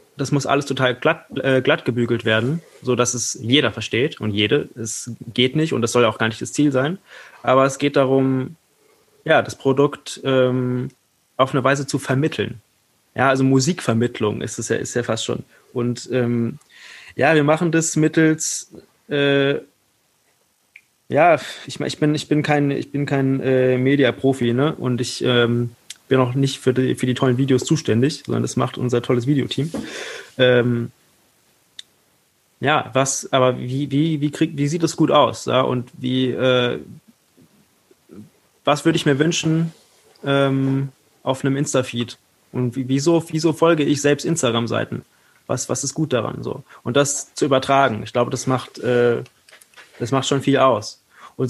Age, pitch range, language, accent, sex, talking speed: 20-39, 125-150 Hz, German, German, male, 170 wpm